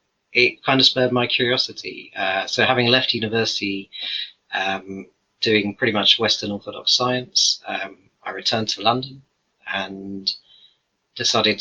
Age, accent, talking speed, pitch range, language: 30-49, British, 130 wpm, 100-115 Hz, English